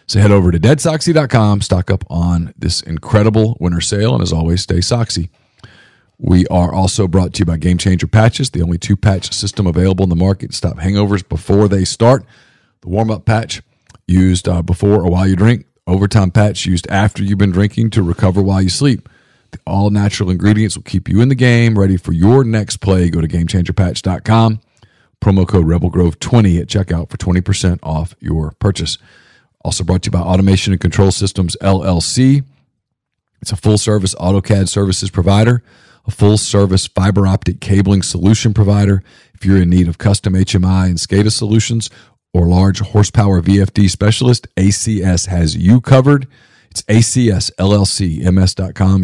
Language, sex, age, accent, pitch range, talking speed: English, male, 40-59, American, 90-110 Hz, 160 wpm